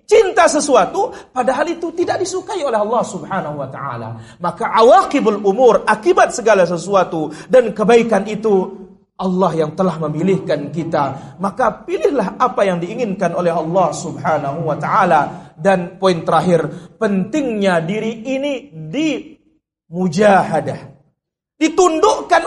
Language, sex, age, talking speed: Indonesian, male, 40-59, 120 wpm